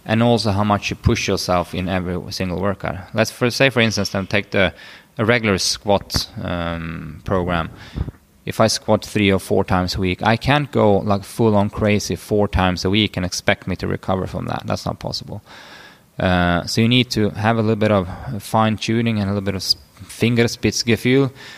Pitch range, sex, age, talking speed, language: 95-110 Hz, male, 20-39, 205 wpm, English